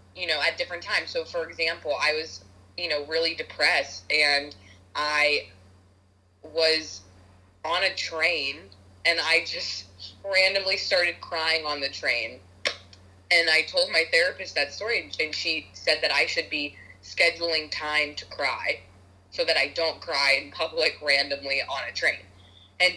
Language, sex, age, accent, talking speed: English, female, 20-39, American, 155 wpm